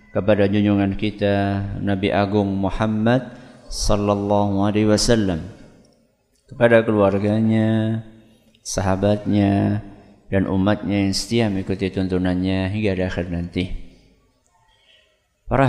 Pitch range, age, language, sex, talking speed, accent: 95-110 Hz, 50-69, Indonesian, male, 85 wpm, native